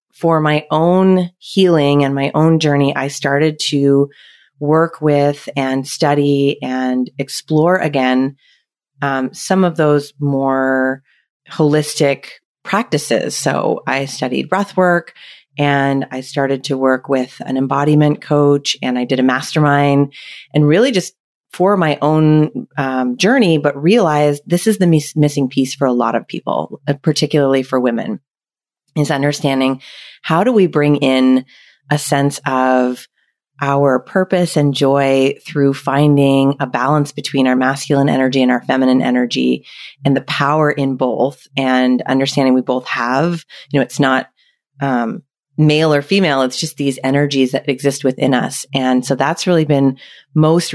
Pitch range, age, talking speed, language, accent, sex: 135-150 Hz, 30-49, 150 wpm, English, American, female